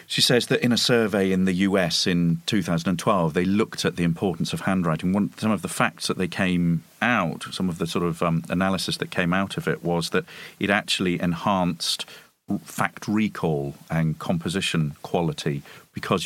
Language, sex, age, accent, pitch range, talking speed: English, male, 40-59, British, 80-100 Hz, 180 wpm